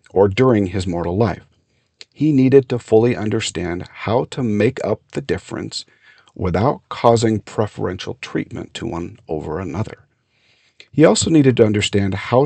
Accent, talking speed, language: American, 145 wpm, English